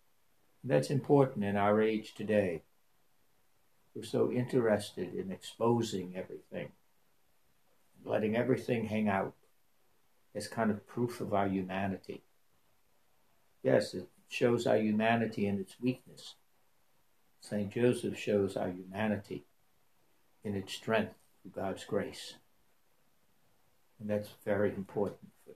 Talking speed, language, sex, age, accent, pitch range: 110 wpm, English, male, 60-79, American, 100-135 Hz